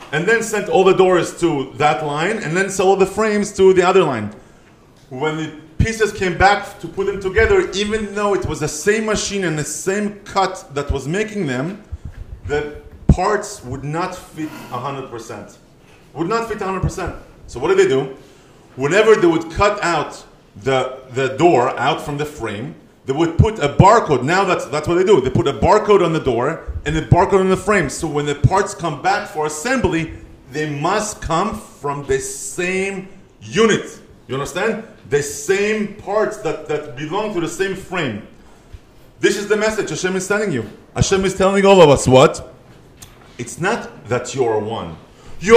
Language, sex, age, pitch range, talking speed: English, male, 30-49, 145-205 Hz, 190 wpm